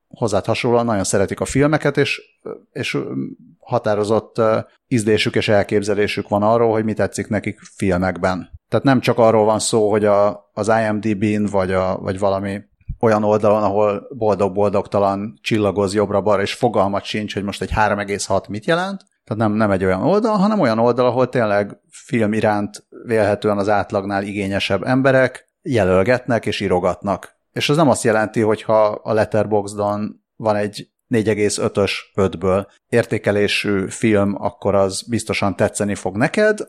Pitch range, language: 100-125 Hz, Hungarian